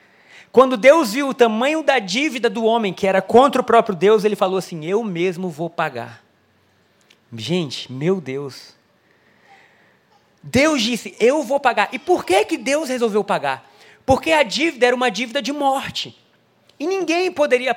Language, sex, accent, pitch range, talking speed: Portuguese, male, Brazilian, 195-255 Hz, 160 wpm